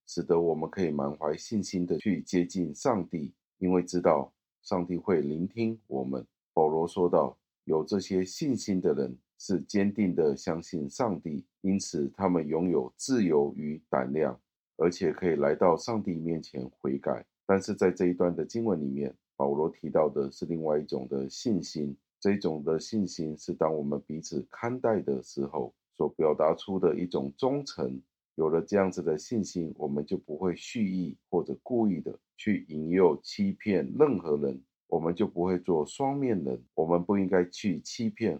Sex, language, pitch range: male, Chinese, 75-95 Hz